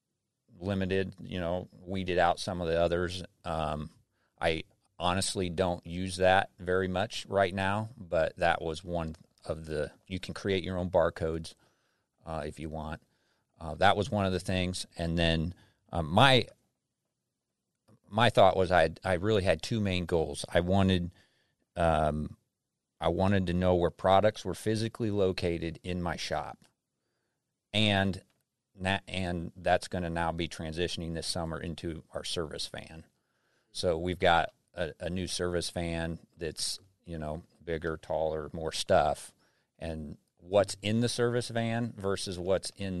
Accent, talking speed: American, 155 wpm